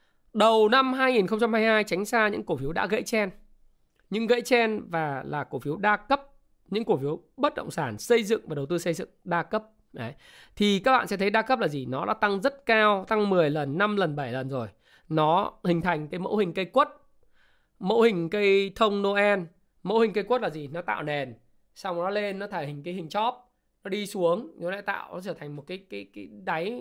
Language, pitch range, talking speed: Vietnamese, 165-215 Hz, 230 wpm